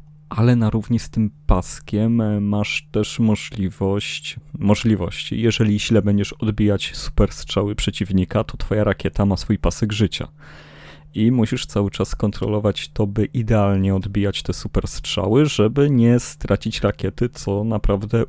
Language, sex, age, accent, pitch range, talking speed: Polish, male, 30-49, native, 100-115 Hz, 130 wpm